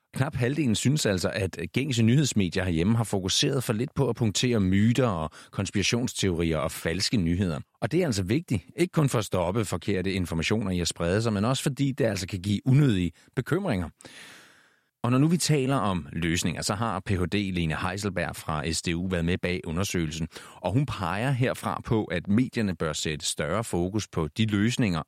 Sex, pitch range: male, 85-125 Hz